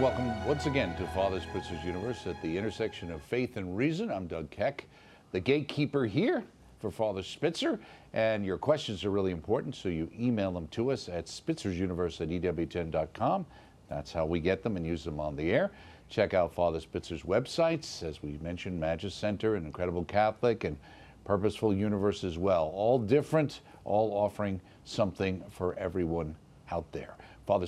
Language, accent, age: English, American, 50-69